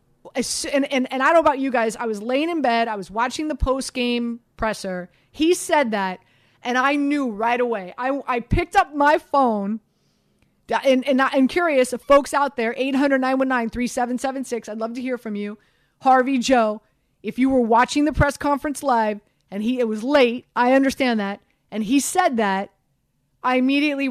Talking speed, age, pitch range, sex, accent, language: 185 wpm, 30-49, 215-275 Hz, female, American, English